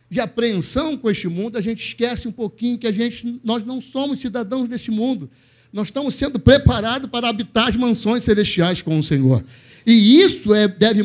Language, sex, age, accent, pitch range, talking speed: Portuguese, male, 60-79, Brazilian, 160-230 Hz, 190 wpm